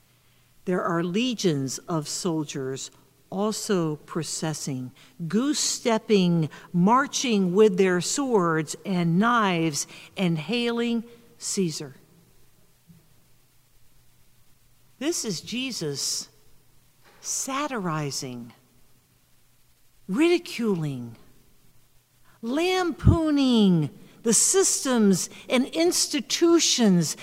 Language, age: English, 50-69